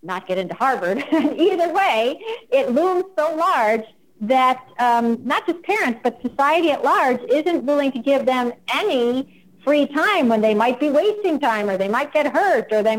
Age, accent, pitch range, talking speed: 50-69, American, 210-285 Hz, 185 wpm